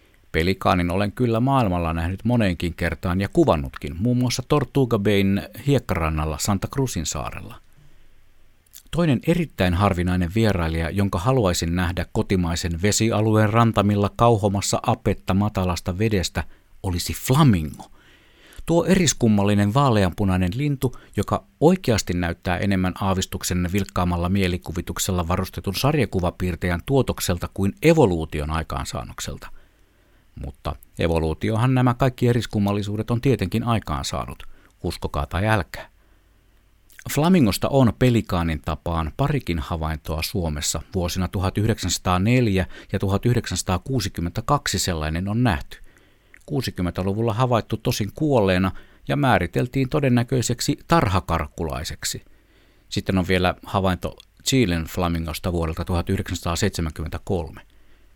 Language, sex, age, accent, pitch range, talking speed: Finnish, male, 50-69, native, 85-115 Hz, 95 wpm